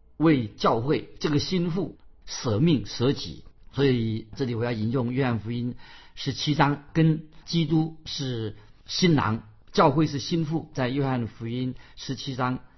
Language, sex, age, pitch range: Chinese, male, 50-69, 115-150 Hz